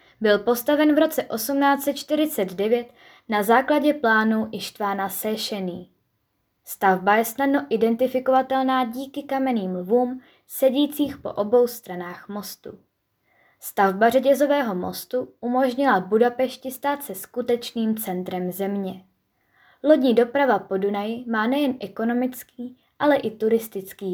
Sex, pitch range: female, 195-260 Hz